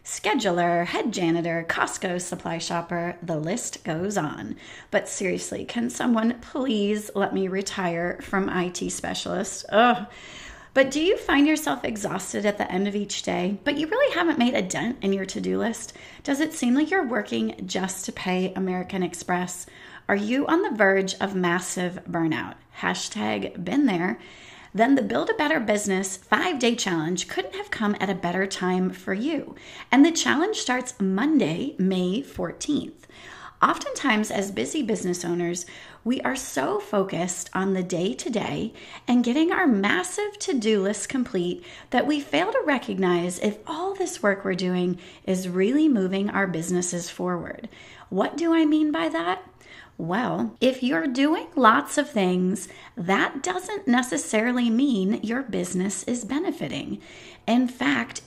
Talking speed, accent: 155 wpm, American